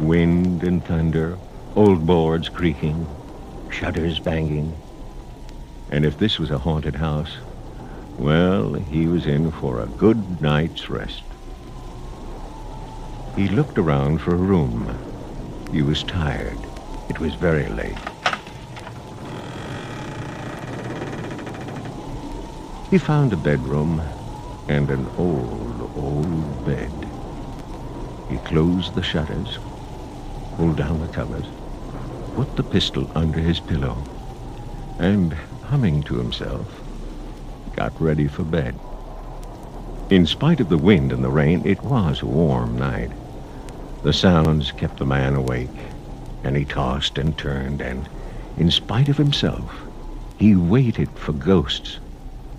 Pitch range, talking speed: 70-90 Hz, 115 wpm